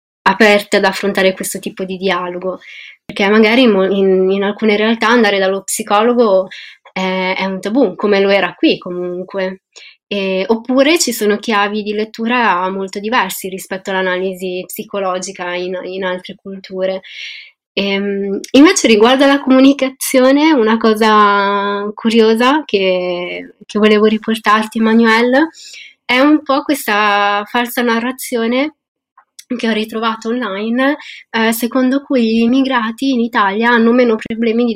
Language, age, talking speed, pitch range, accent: Italian, 20-39, 125 wpm, 190-235 Hz, native